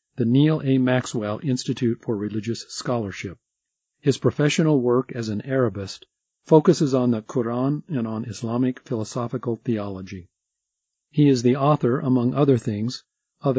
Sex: male